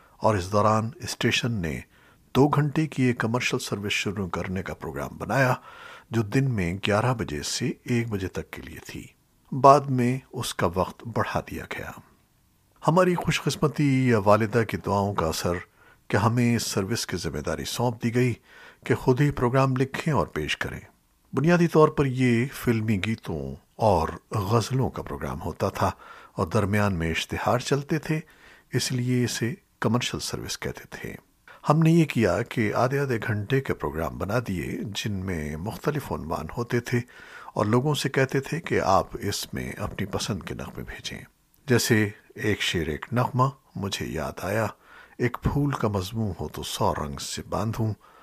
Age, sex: 60-79, male